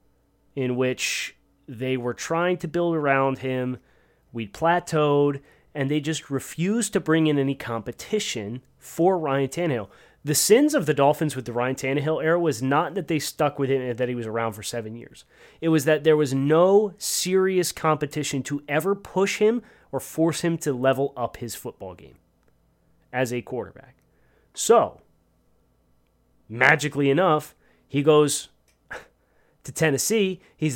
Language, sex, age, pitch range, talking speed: English, male, 30-49, 125-155 Hz, 155 wpm